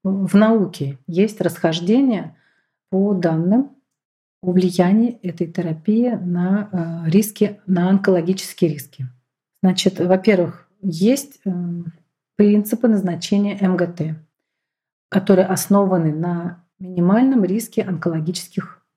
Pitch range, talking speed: 170-205 Hz, 80 wpm